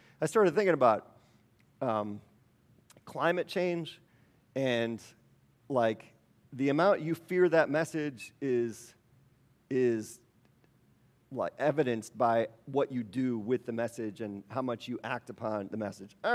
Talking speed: 130 wpm